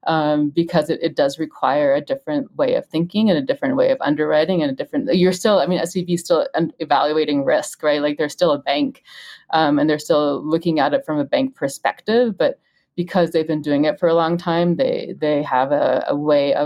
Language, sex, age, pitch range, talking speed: English, female, 30-49, 155-185 Hz, 225 wpm